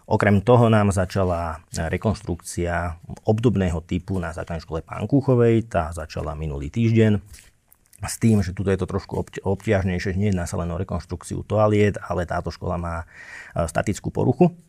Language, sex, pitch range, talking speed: Slovak, male, 85-105 Hz, 145 wpm